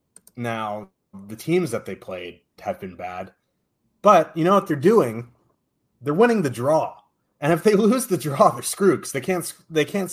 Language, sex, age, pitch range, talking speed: English, male, 30-49, 110-155 Hz, 190 wpm